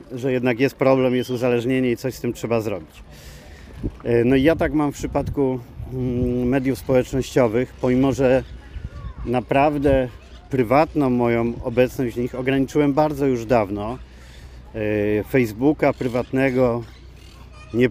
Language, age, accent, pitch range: Polish, 40-59, native, 115-135 Hz